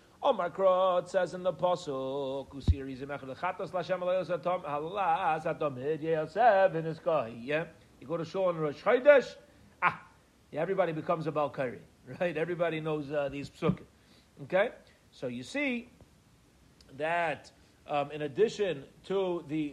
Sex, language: male, English